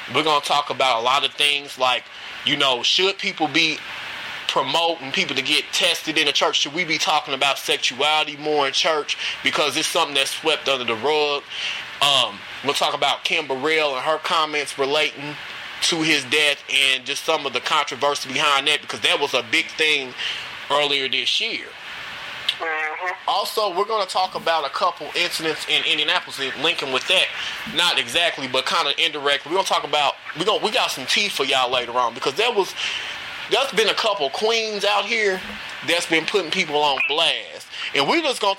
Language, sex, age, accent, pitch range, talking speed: English, male, 20-39, American, 145-200 Hz, 190 wpm